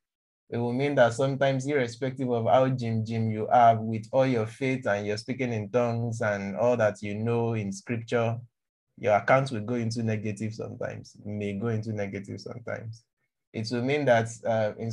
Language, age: English, 20-39